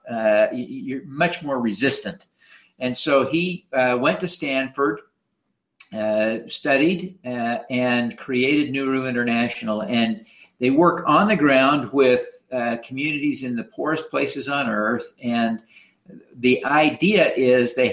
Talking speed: 130 wpm